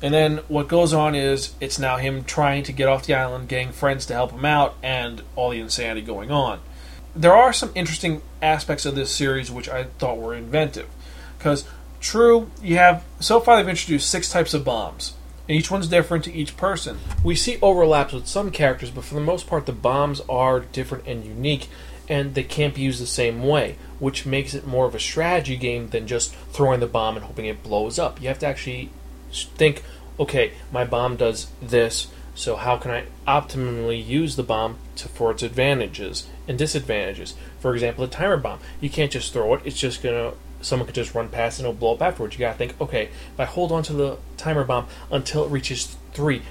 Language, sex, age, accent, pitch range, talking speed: English, male, 30-49, American, 120-150 Hz, 215 wpm